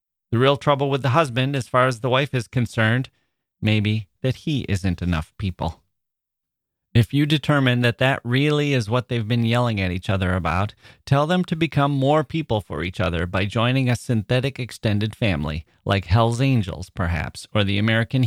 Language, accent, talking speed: English, American, 185 wpm